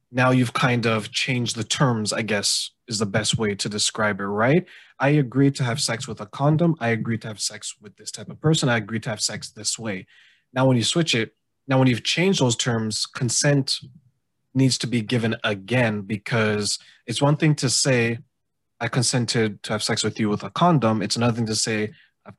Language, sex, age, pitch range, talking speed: English, male, 20-39, 105-130 Hz, 215 wpm